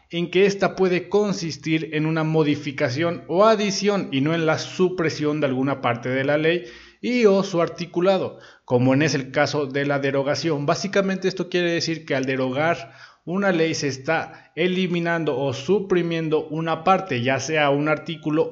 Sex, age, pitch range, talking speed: male, 30-49, 135-175 Hz, 170 wpm